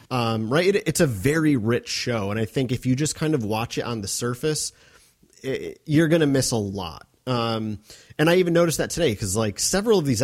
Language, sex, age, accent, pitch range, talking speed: English, male, 30-49, American, 105-140 Hz, 240 wpm